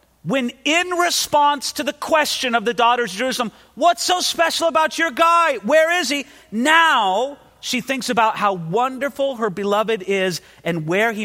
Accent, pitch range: American, 190-280 Hz